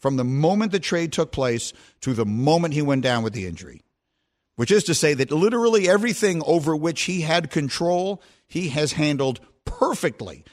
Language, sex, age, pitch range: English, male, 50-69, 120-170 Hz